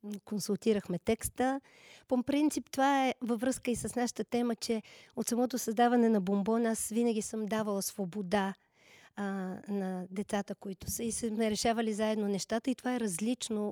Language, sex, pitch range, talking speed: Bulgarian, female, 205-235 Hz, 160 wpm